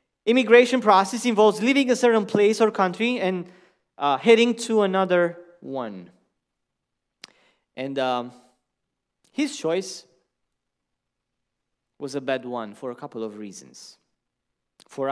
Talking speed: 115 wpm